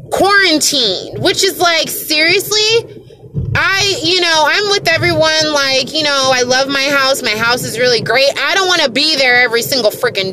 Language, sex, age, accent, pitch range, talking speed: English, female, 20-39, American, 230-320 Hz, 185 wpm